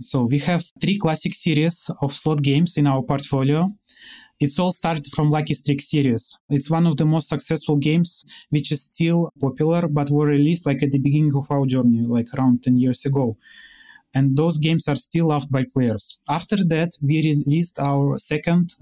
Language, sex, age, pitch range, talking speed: English, male, 20-39, 140-165 Hz, 190 wpm